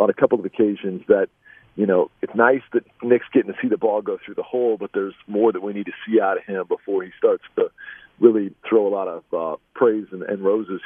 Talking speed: 255 wpm